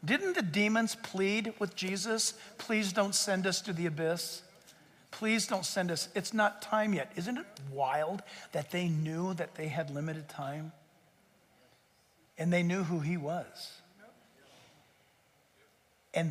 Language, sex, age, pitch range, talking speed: English, male, 60-79, 145-190 Hz, 145 wpm